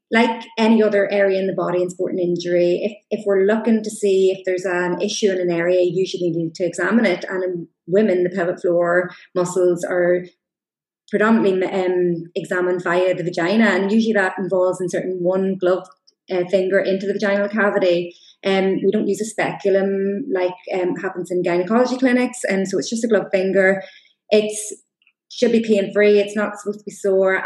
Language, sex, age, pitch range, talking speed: English, female, 20-39, 190-215 Hz, 190 wpm